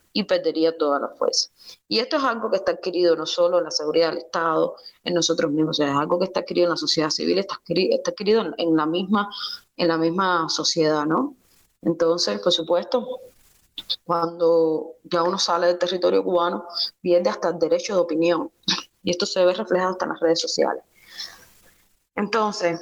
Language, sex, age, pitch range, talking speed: Spanish, female, 20-39, 165-190 Hz, 190 wpm